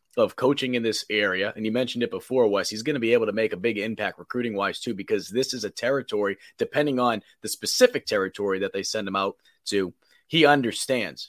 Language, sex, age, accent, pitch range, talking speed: English, male, 30-49, American, 100-130 Hz, 220 wpm